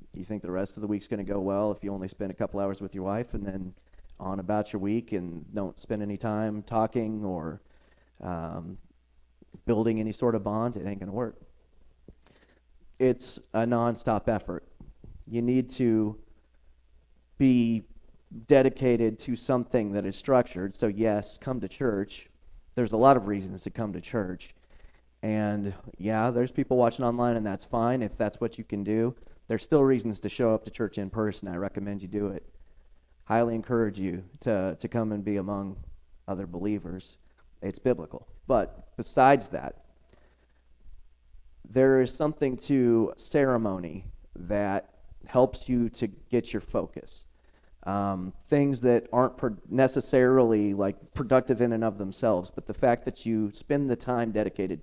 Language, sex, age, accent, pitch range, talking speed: English, male, 30-49, American, 90-120 Hz, 165 wpm